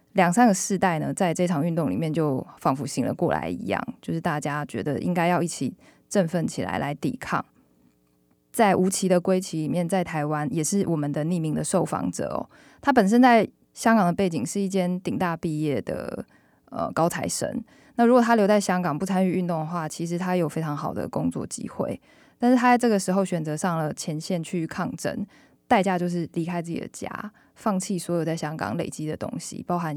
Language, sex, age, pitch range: Chinese, female, 20-39, 155-205 Hz